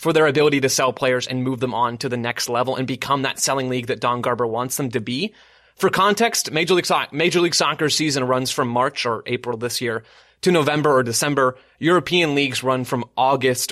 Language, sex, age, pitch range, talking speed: English, male, 30-49, 125-160 Hz, 225 wpm